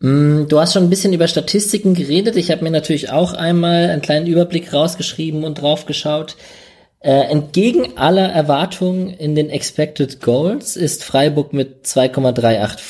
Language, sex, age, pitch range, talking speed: German, male, 20-39, 125-155 Hz, 150 wpm